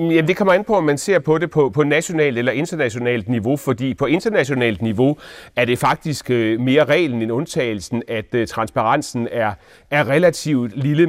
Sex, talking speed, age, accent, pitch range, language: male, 160 wpm, 30-49, native, 120-155 Hz, Danish